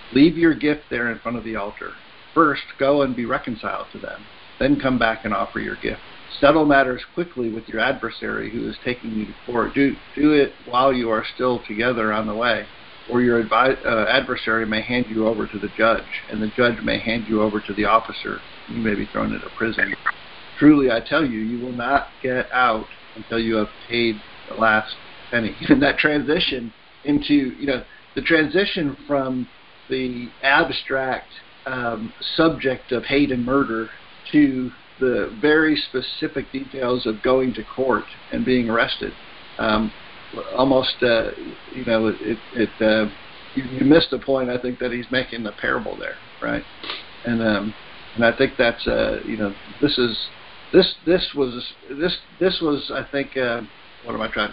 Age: 50-69